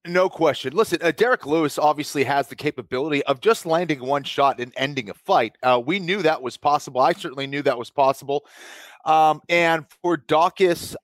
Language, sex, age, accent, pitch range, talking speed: English, male, 30-49, American, 150-195 Hz, 190 wpm